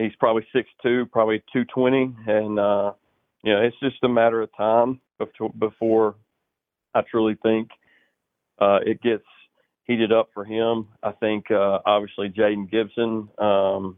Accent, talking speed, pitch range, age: American, 150 wpm, 100-115 Hz, 40-59